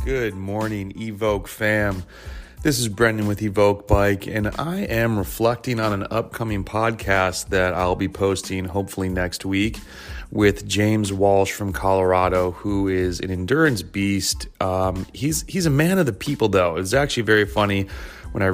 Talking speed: 165 wpm